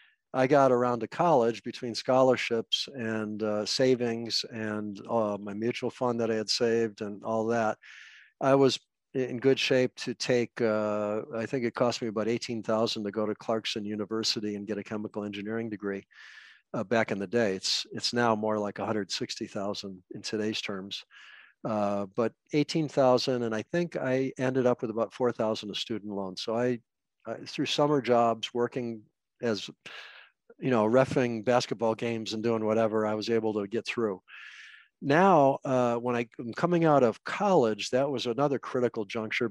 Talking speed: 170 wpm